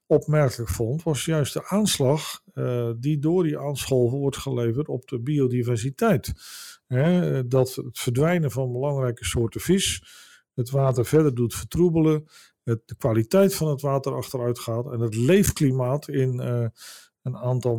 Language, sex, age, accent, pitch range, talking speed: Dutch, male, 50-69, Dutch, 120-150 Hz, 140 wpm